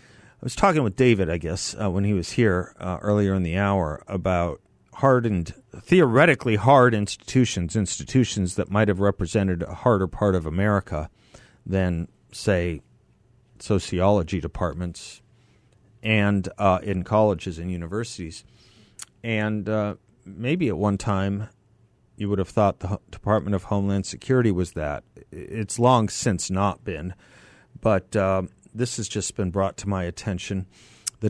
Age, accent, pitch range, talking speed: 40-59, American, 95-120 Hz, 140 wpm